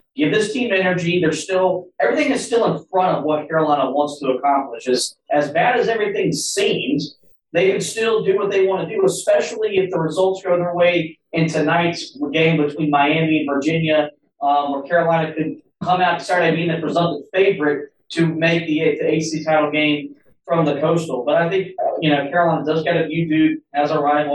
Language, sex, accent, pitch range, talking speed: English, male, American, 145-175 Hz, 200 wpm